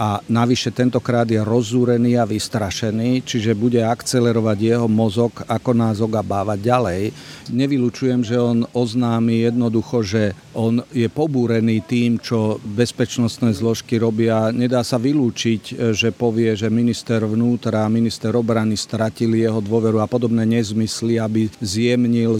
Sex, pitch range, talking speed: male, 110-125 Hz, 130 wpm